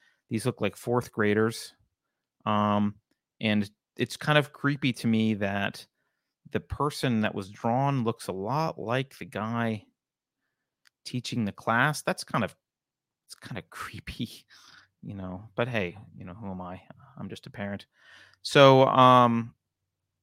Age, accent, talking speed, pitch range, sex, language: 30-49, American, 150 wpm, 105-135 Hz, male, English